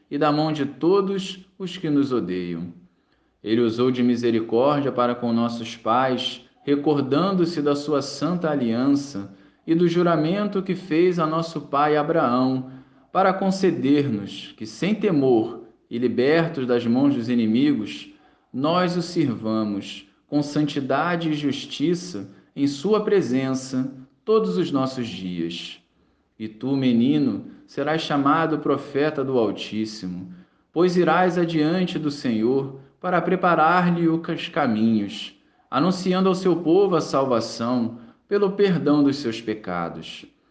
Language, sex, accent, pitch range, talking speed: Portuguese, male, Brazilian, 120-170 Hz, 125 wpm